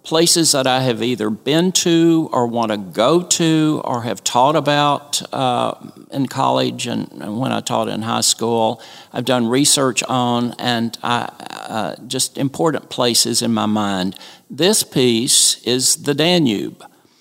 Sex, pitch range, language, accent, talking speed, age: male, 115-145 Hz, English, American, 155 wpm, 60-79